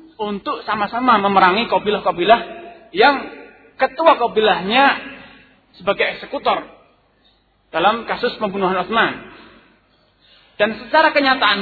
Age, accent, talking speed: 40-59, native, 85 wpm